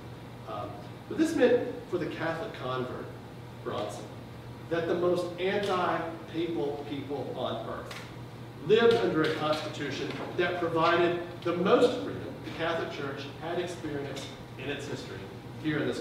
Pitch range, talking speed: 120-165 Hz, 130 wpm